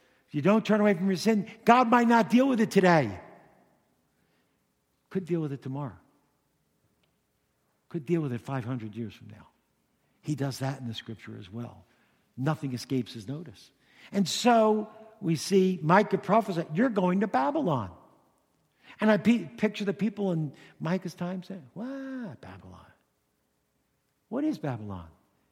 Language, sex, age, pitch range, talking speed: English, male, 60-79, 140-230 Hz, 150 wpm